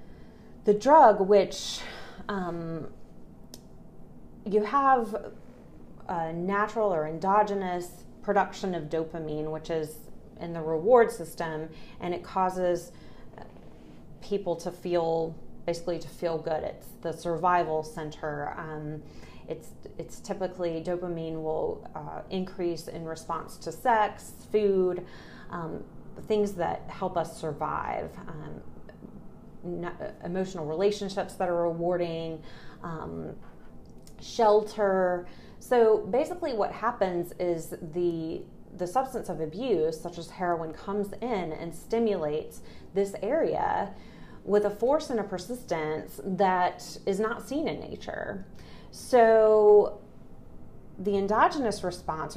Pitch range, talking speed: 165-205 Hz, 110 wpm